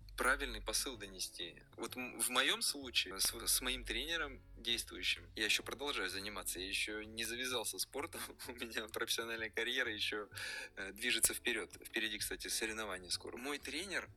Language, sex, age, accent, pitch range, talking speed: Russian, male, 20-39, native, 115-130 Hz, 150 wpm